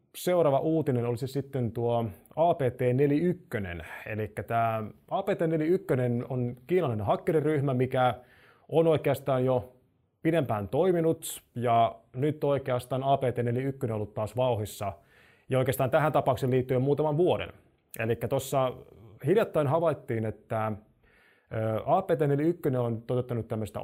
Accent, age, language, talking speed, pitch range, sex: native, 20-39, Finnish, 110 wpm, 115-140 Hz, male